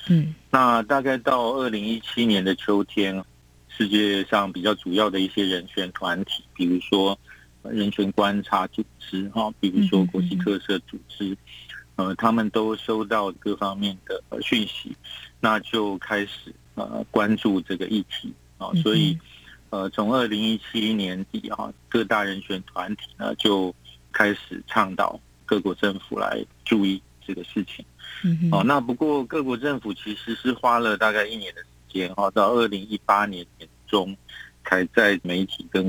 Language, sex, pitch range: Chinese, male, 95-110 Hz